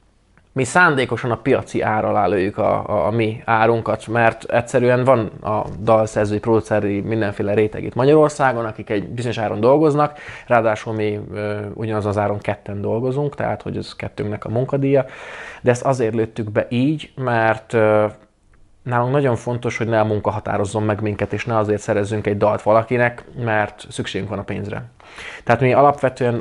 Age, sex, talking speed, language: 20-39, male, 160 wpm, Hungarian